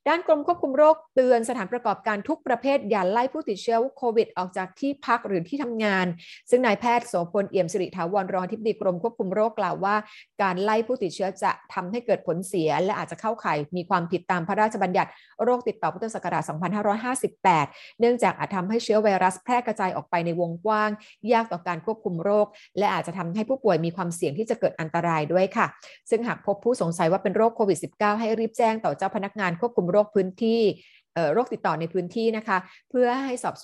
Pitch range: 185-235 Hz